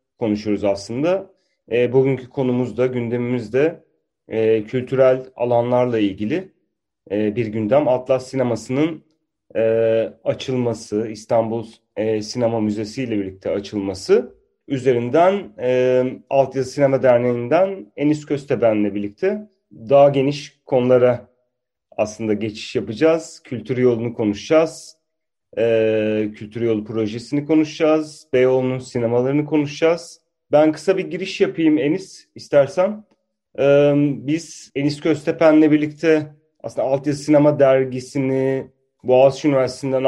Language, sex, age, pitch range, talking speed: Turkish, male, 40-59, 115-145 Hz, 100 wpm